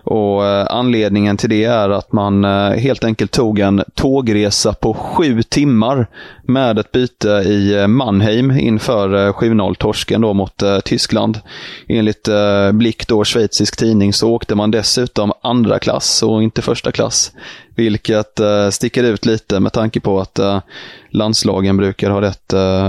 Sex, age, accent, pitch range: male, 20-39, native, 105-120 Hz